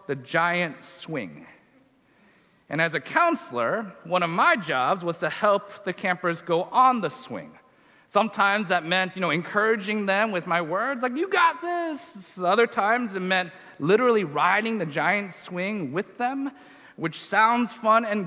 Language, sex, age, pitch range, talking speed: English, male, 30-49, 180-235 Hz, 160 wpm